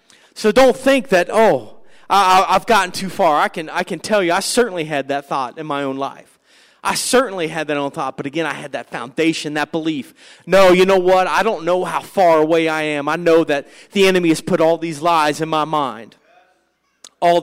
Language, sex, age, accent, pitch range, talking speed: English, male, 30-49, American, 160-225 Hz, 225 wpm